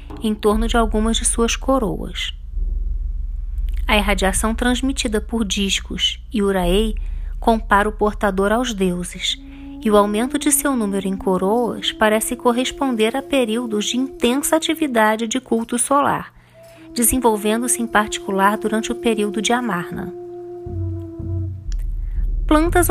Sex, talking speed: female, 120 wpm